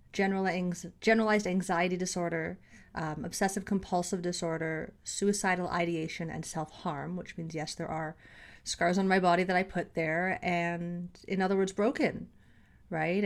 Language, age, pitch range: English, 30-49, 170-205 Hz